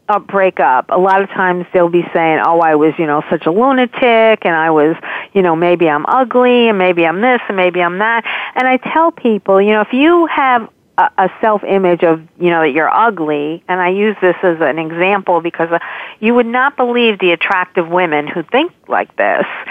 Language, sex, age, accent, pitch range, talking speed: English, female, 50-69, American, 175-230 Hz, 215 wpm